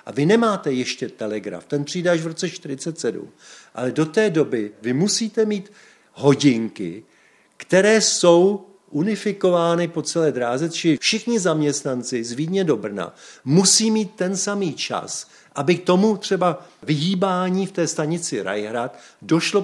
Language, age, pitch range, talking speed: Czech, 50-69, 135-180 Hz, 145 wpm